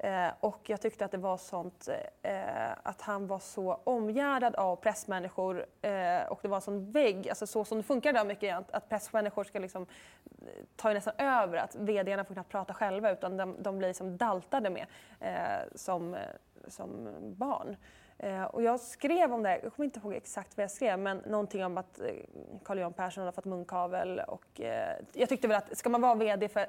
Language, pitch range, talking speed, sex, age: English, 195-240 Hz, 205 wpm, female, 20-39